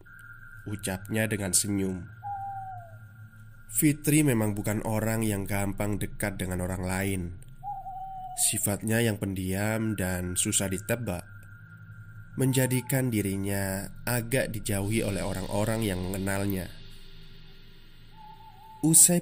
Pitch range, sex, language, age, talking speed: 100-120 Hz, male, Indonesian, 20-39, 85 wpm